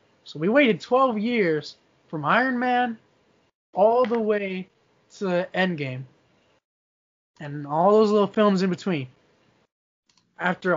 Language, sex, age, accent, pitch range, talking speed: English, male, 20-39, American, 155-195 Hz, 115 wpm